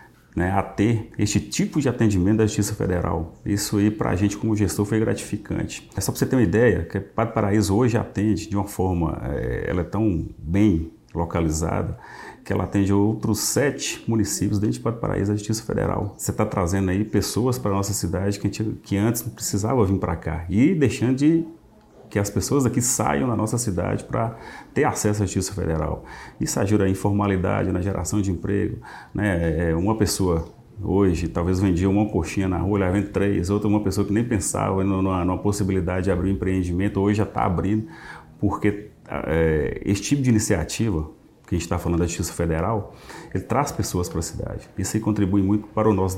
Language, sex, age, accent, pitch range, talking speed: Portuguese, male, 40-59, Brazilian, 90-110 Hz, 200 wpm